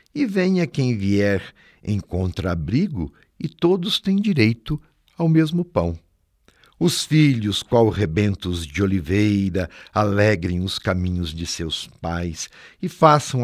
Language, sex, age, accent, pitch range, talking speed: Portuguese, male, 60-79, Brazilian, 95-150 Hz, 120 wpm